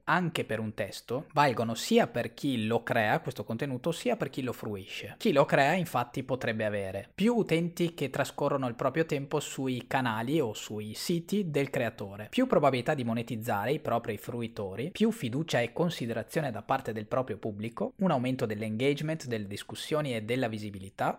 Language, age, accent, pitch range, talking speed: Italian, 20-39, native, 115-160 Hz, 175 wpm